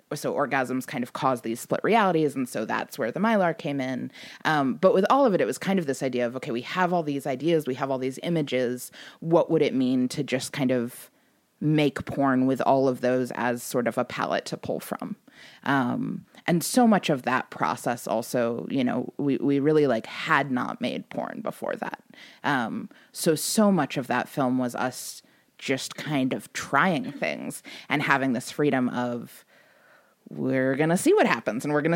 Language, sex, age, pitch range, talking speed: English, female, 20-39, 130-160 Hz, 205 wpm